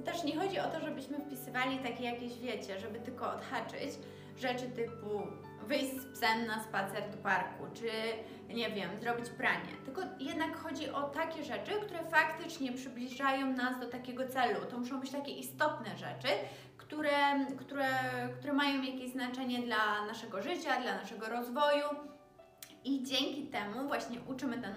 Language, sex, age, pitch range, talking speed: Polish, female, 20-39, 225-275 Hz, 155 wpm